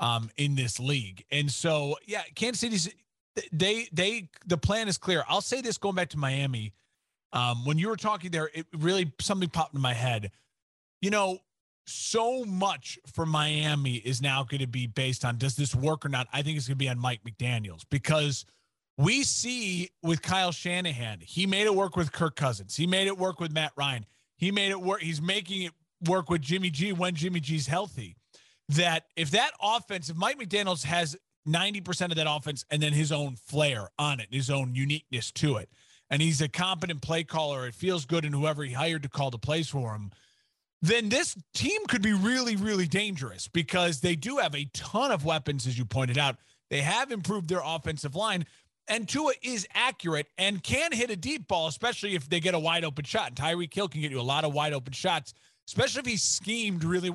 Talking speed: 210 wpm